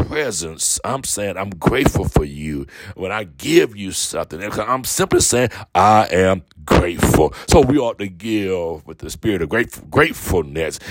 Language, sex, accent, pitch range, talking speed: English, male, American, 95-120 Hz, 155 wpm